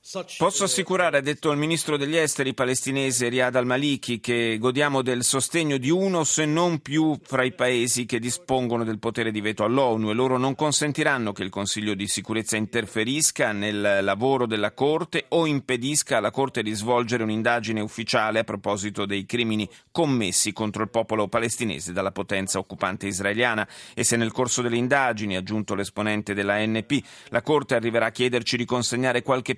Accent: native